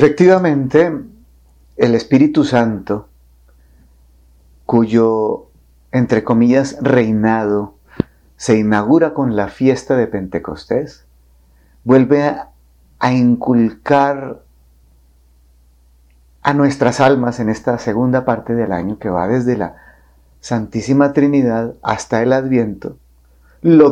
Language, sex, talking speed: Spanish, male, 95 wpm